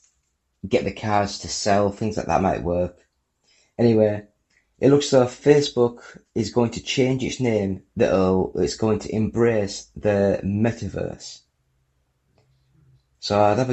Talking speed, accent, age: 130 wpm, British, 30-49